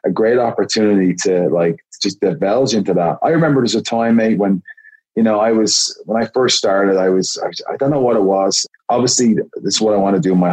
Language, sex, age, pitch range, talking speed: English, male, 30-49, 95-110 Hz, 240 wpm